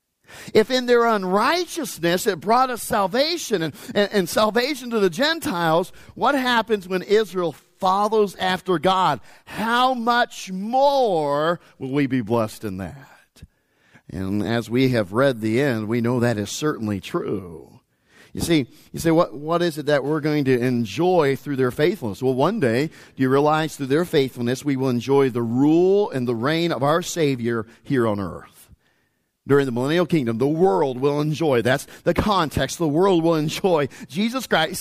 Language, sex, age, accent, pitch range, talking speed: English, male, 50-69, American, 135-200 Hz, 170 wpm